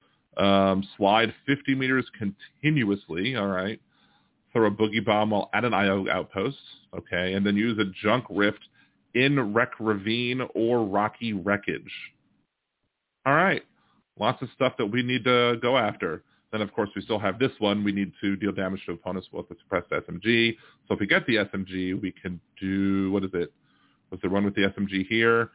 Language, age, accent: English, 40-59, American